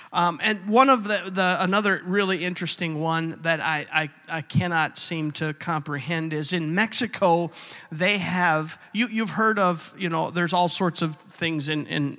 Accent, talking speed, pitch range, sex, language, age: American, 175 wpm, 155-190 Hz, male, English, 50-69